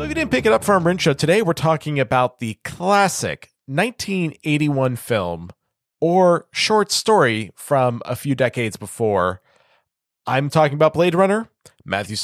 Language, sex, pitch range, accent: English, male, 120-155 Hz, American